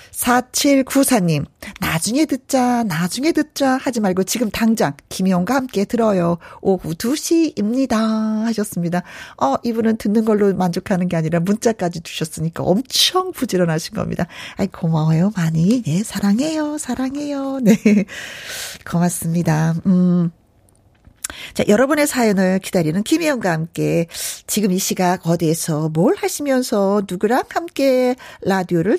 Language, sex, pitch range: Korean, female, 175-255 Hz